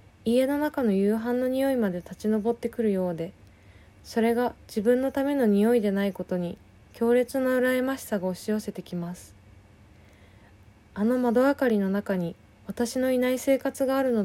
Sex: female